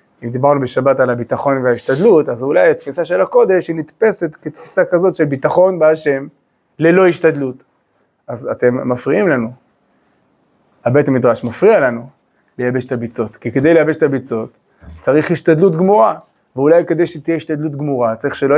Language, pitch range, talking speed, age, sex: Hebrew, 135-185 Hz, 150 wpm, 30-49, male